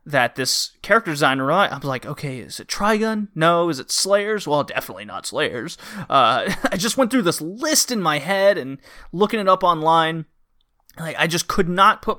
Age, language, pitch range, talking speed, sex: 30-49, English, 130-180 Hz, 195 wpm, male